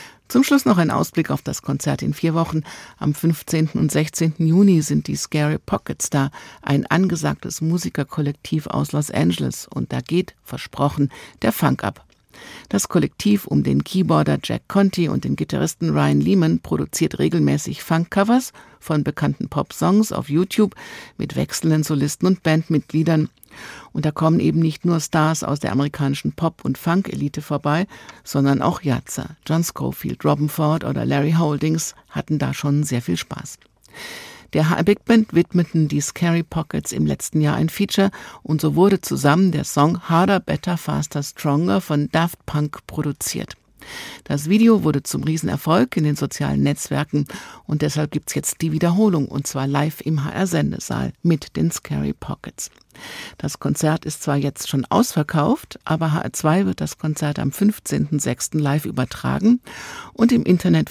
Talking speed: 155 wpm